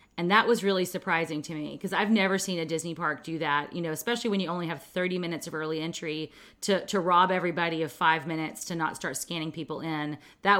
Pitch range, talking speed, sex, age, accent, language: 160-195 Hz, 240 wpm, female, 30-49, American, English